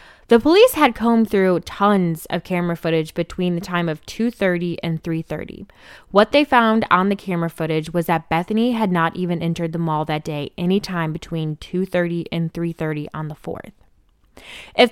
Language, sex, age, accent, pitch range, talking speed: English, female, 20-39, American, 165-200 Hz, 175 wpm